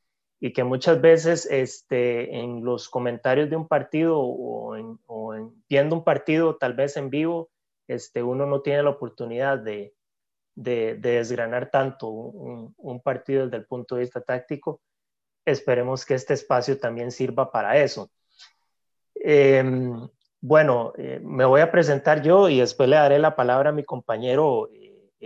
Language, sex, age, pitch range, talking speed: Spanish, male, 30-49, 120-145 Hz, 160 wpm